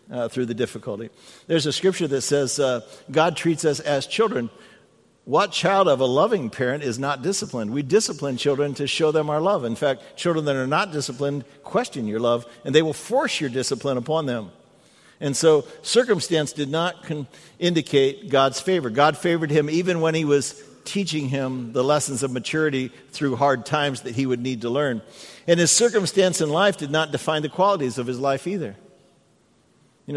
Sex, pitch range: male, 135-165 Hz